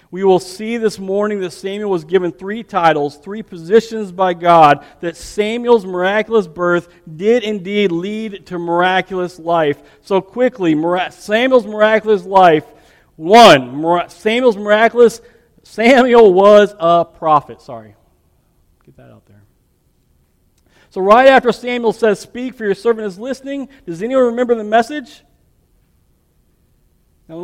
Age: 40-59